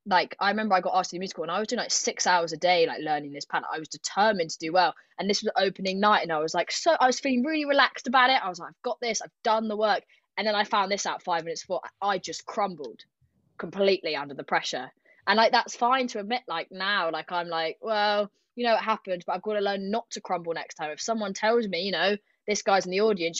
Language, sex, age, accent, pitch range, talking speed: English, female, 20-39, British, 175-225 Hz, 275 wpm